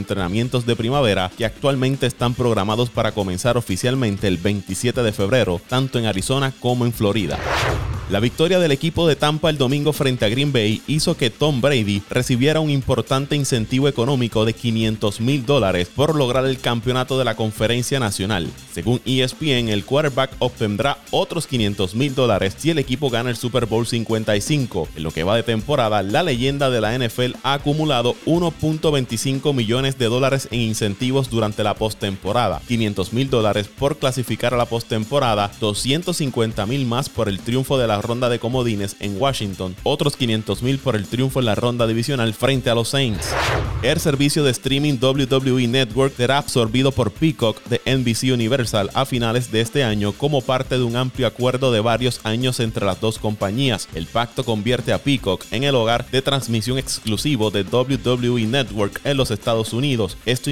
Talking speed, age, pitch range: 175 wpm, 30-49, 110-135 Hz